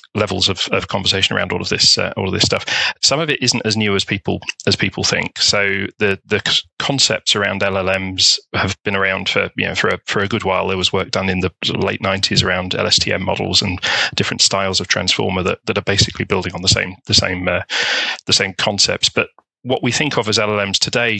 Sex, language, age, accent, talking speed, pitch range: male, English, 30-49, British, 235 wpm, 95-110 Hz